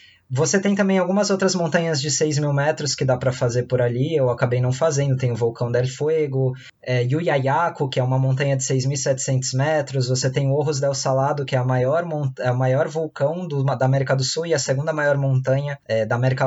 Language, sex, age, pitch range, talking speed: Portuguese, male, 20-39, 135-170 Hz, 200 wpm